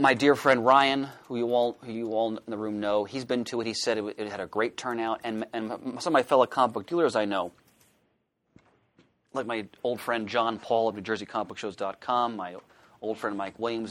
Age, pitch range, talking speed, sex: 30-49, 105-125 Hz, 215 wpm, male